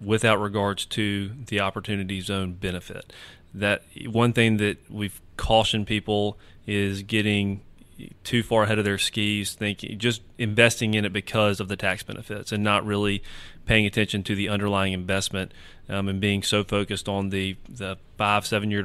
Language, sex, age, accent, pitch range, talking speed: English, male, 30-49, American, 100-110 Hz, 160 wpm